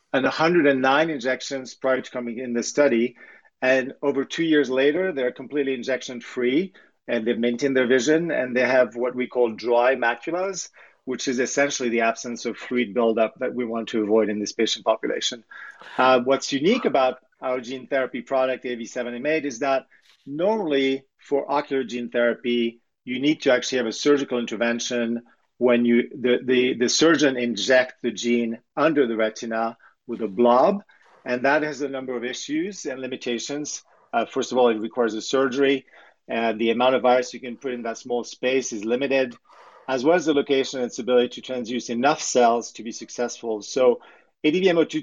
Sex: male